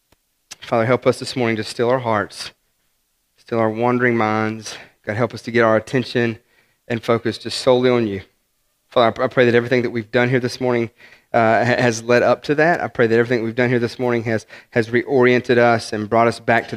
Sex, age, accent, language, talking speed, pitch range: male, 30-49, American, English, 220 wpm, 115-130 Hz